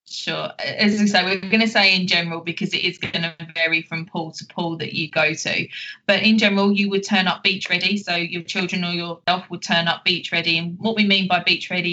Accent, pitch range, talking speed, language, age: British, 170-195 Hz, 255 wpm, English, 20-39